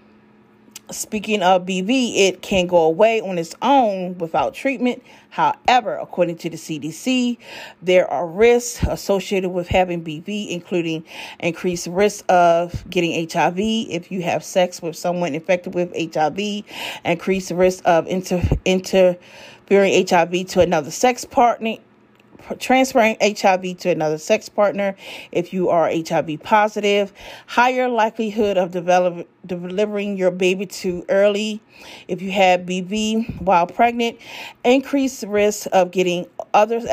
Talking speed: 130 wpm